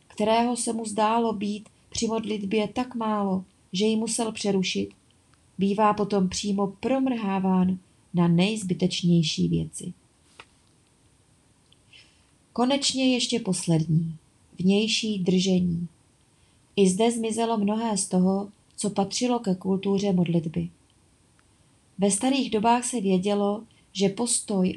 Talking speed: 105 wpm